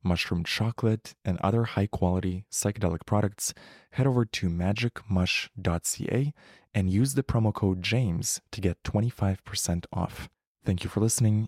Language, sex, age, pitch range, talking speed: English, male, 20-39, 90-110 Hz, 130 wpm